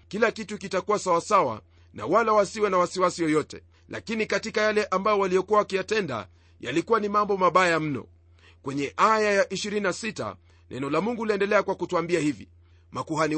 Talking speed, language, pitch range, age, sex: 150 wpm, Swahili, 130-210 Hz, 40-59, male